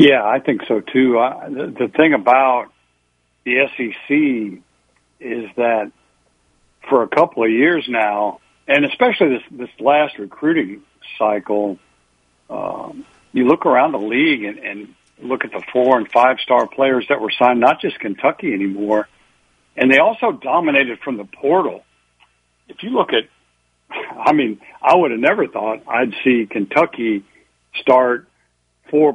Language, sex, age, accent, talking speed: English, male, 60-79, American, 150 wpm